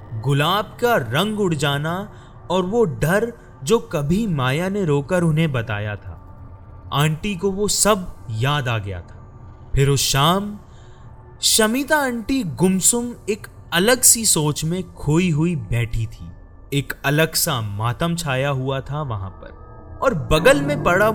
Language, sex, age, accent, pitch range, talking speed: Hindi, male, 30-49, native, 110-185 Hz, 150 wpm